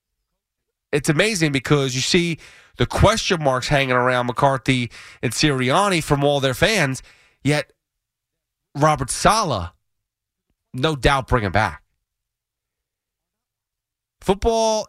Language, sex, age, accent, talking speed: English, male, 30-49, American, 105 wpm